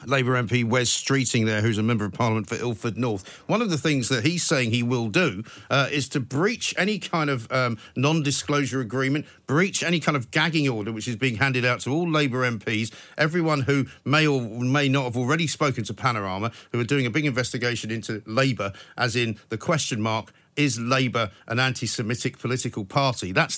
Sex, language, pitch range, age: male, English, 115-150 Hz, 50-69